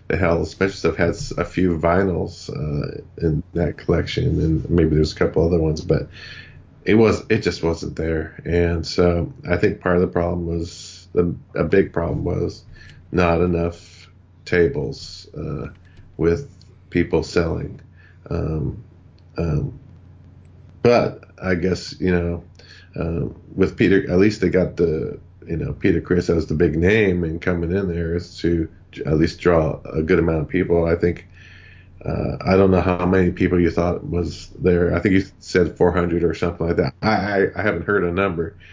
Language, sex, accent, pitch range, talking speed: English, male, American, 85-90 Hz, 175 wpm